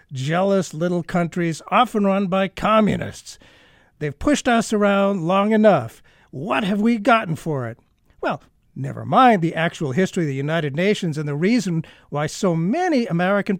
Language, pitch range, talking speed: English, 155-215 Hz, 160 wpm